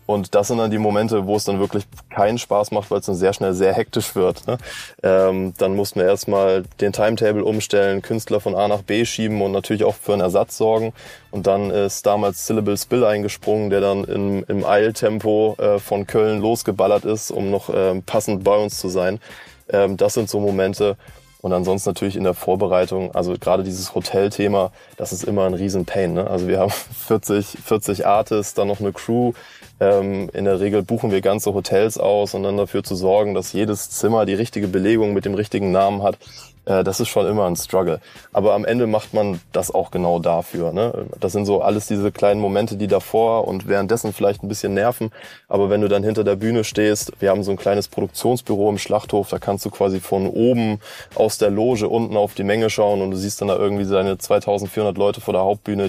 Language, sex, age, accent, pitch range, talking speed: German, male, 20-39, German, 95-105 Hz, 210 wpm